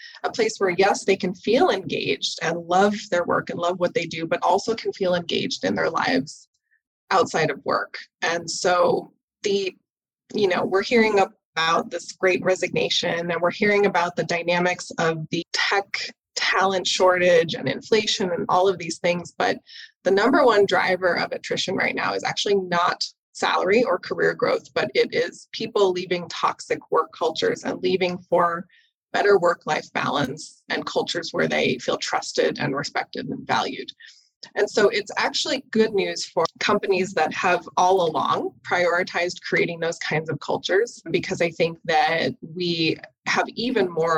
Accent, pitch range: American, 175-240 Hz